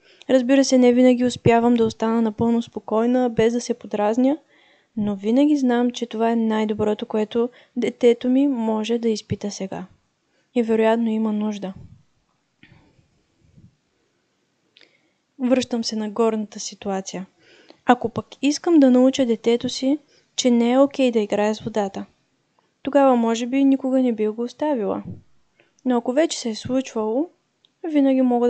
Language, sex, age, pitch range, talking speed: Bulgarian, female, 20-39, 215-255 Hz, 145 wpm